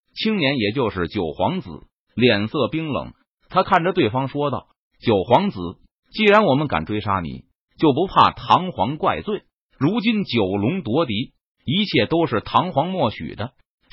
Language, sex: Chinese, male